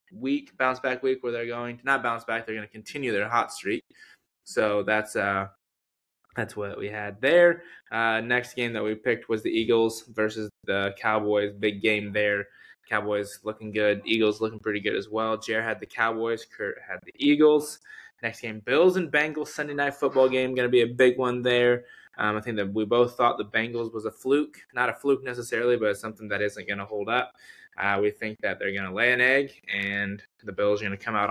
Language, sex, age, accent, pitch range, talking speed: English, male, 10-29, American, 105-125 Hz, 225 wpm